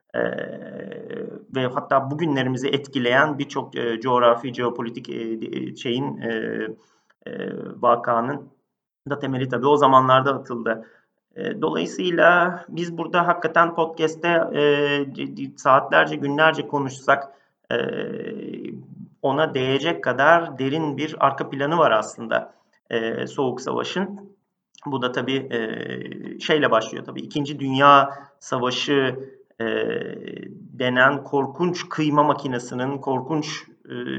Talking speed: 105 wpm